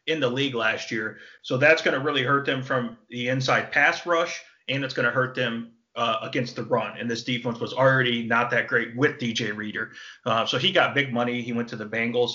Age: 30-49